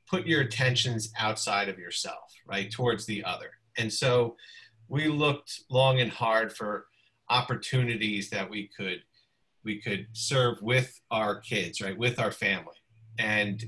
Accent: American